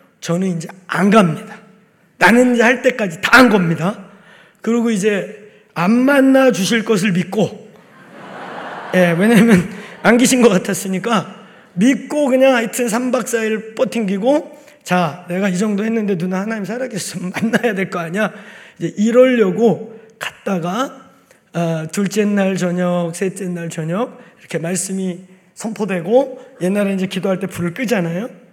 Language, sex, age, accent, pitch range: Korean, male, 30-49, native, 185-235 Hz